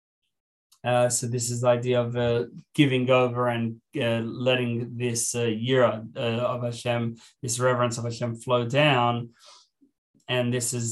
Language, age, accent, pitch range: English, 20-39, Australian, 120-125 Hz